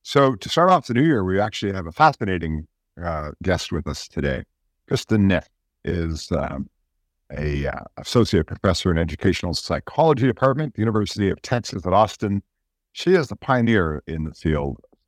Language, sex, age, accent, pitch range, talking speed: English, male, 50-69, American, 80-110 Hz, 170 wpm